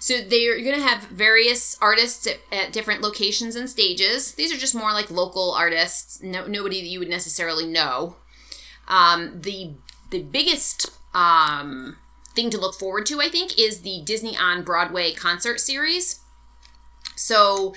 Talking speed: 160 wpm